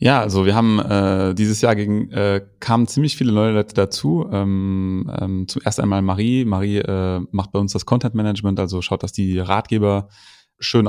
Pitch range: 95-105 Hz